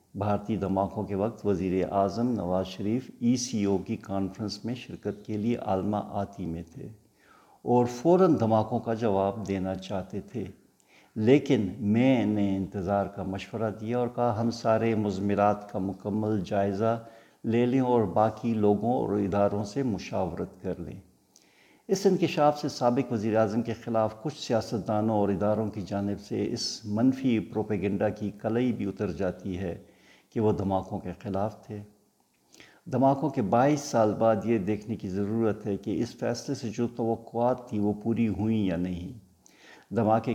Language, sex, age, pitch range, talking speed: Urdu, male, 60-79, 100-115 Hz, 160 wpm